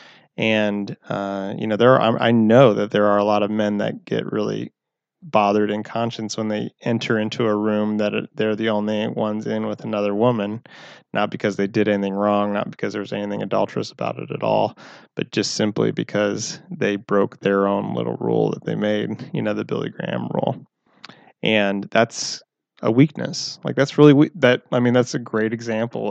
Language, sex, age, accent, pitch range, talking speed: English, male, 20-39, American, 105-120 Hz, 195 wpm